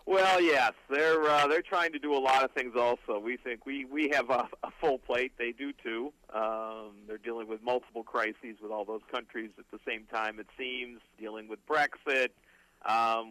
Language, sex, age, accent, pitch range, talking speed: English, male, 50-69, American, 115-135 Hz, 205 wpm